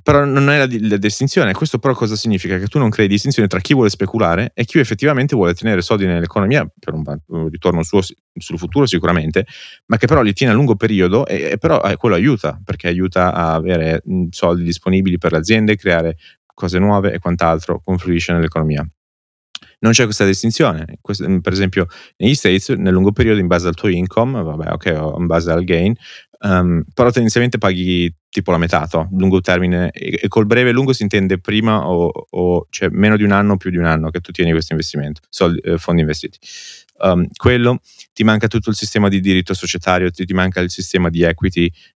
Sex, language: male, Italian